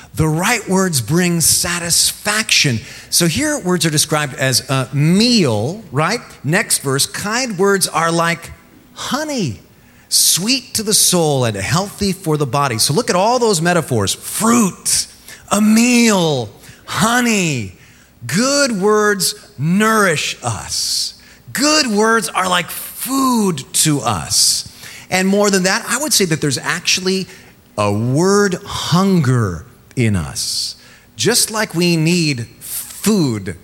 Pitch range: 120-195 Hz